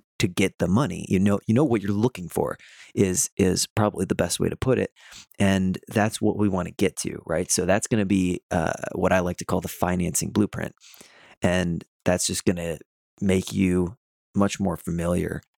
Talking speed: 210 wpm